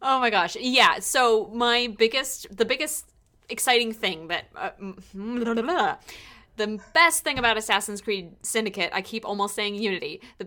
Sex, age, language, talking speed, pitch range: female, 20-39, English, 145 wpm, 190-255 Hz